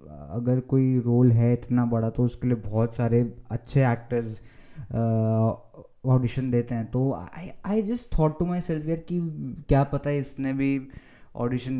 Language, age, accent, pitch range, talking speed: Hindi, 20-39, native, 120-150 Hz, 145 wpm